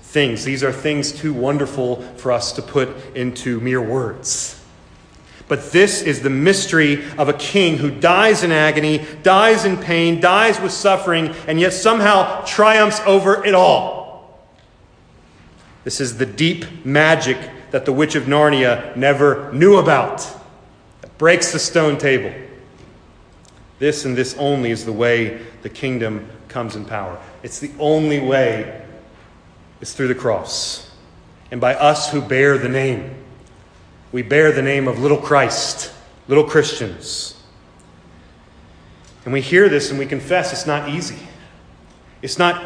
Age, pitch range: 40-59, 130-190 Hz